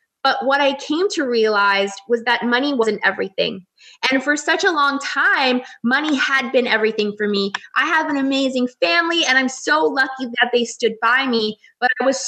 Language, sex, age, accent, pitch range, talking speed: English, female, 20-39, American, 230-280 Hz, 195 wpm